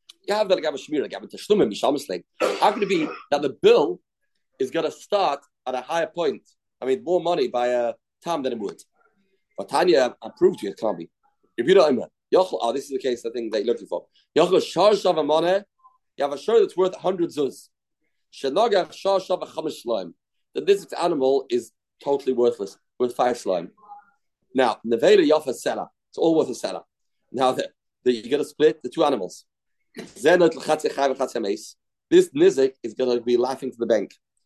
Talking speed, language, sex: 180 wpm, English, male